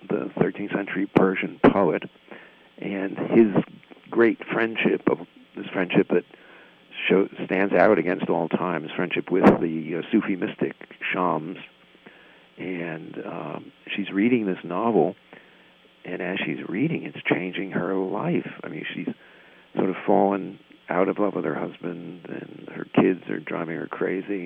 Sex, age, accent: male, 50-69, American